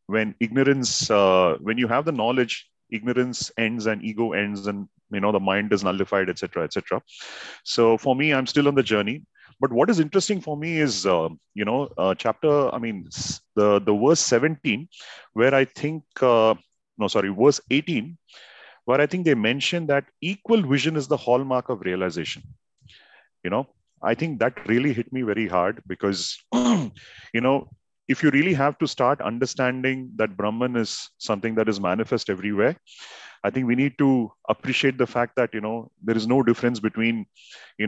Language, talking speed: English, 185 wpm